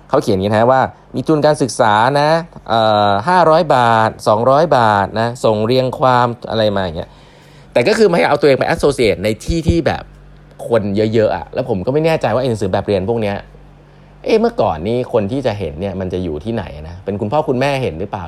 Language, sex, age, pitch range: Thai, male, 20-39, 95-130 Hz